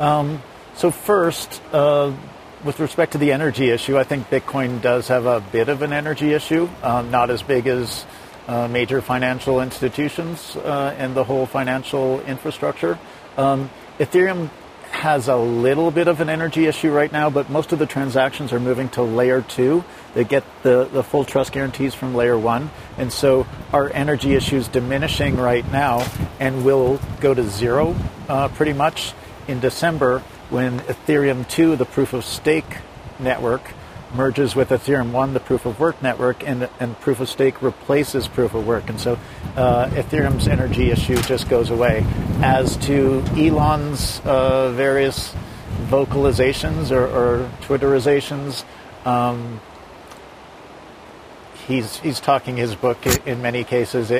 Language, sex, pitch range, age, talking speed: English, male, 125-145 Hz, 50-69, 155 wpm